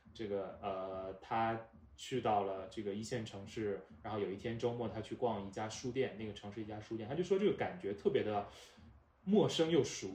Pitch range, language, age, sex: 105-125 Hz, Chinese, 20-39, male